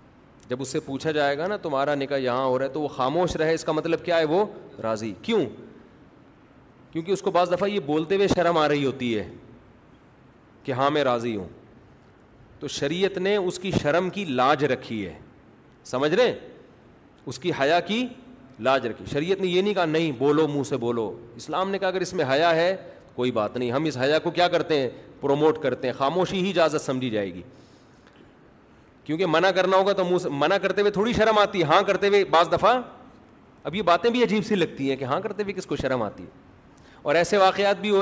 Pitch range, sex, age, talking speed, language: 130-185 Hz, male, 40-59, 220 wpm, Urdu